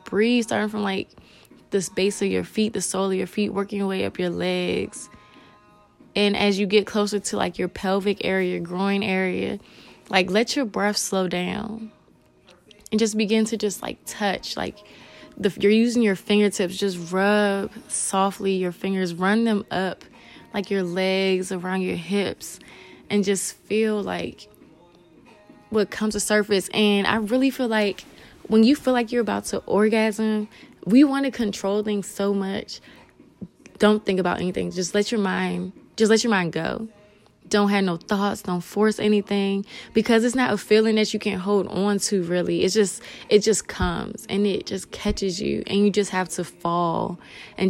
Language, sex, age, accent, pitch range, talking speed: English, female, 20-39, American, 190-215 Hz, 180 wpm